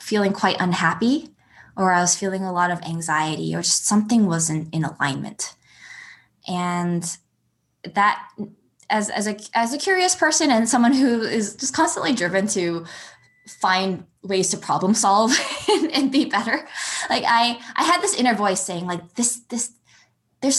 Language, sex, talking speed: English, female, 160 wpm